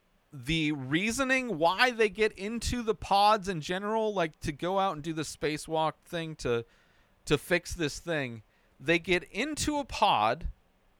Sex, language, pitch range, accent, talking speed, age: male, English, 135-195 Hz, American, 160 wpm, 40-59